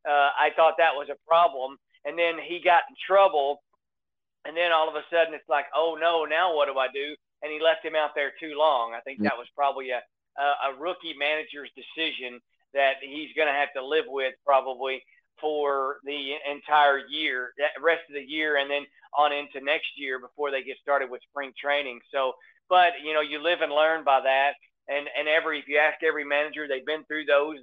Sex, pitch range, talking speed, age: male, 135-160 Hz, 215 wpm, 40-59